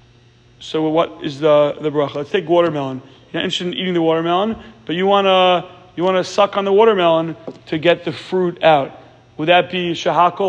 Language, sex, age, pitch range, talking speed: English, male, 30-49, 160-210 Hz, 200 wpm